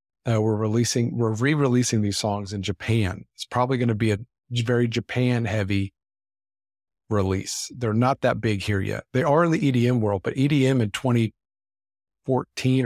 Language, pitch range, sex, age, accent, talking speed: English, 100-125 Hz, male, 50-69, American, 165 wpm